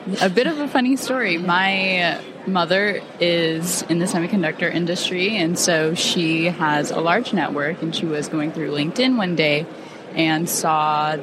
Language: English